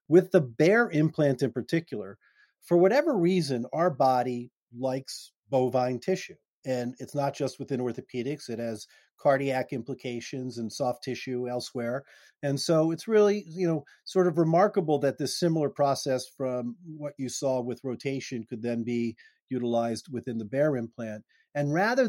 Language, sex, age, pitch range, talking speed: English, male, 40-59, 125-155 Hz, 155 wpm